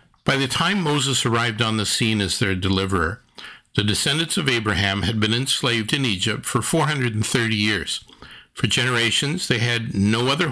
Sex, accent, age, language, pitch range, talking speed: male, American, 60-79, English, 105-135 Hz, 165 wpm